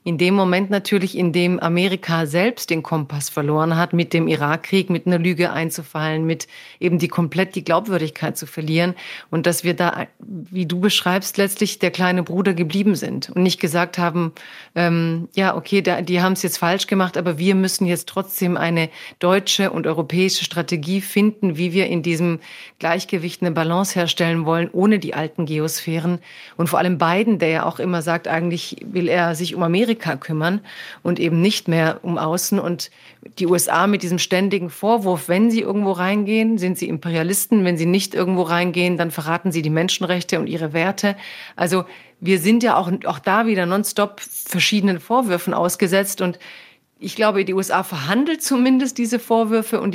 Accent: German